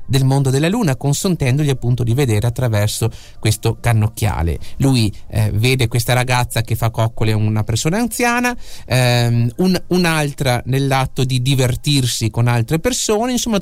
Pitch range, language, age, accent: 110-160 Hz, Italian, 30-49, native